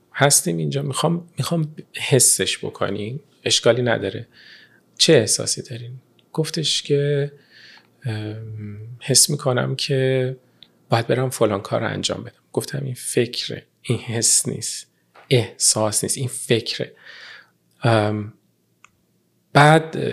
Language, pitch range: Persian, 120-155 Hz